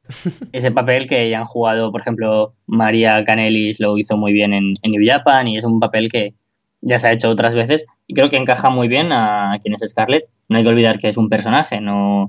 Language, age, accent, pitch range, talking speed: Spanish, 20-39, Spanish, 105-120 Hz, 240 wpm